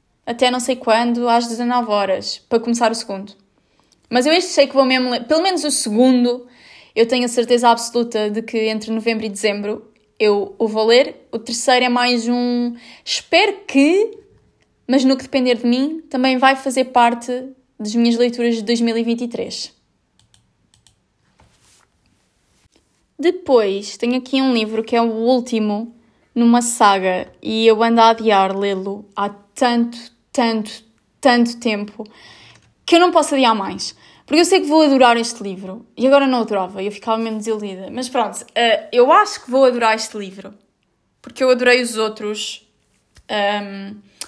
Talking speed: 160 wpm